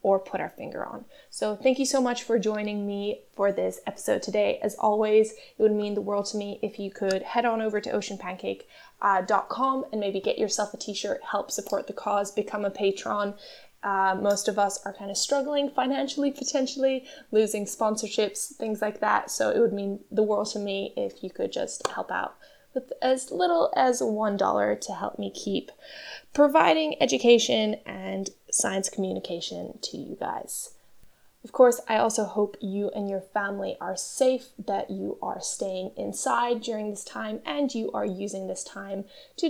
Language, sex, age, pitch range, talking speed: English, female, 10-29, 200-260 Hz, 180 wpm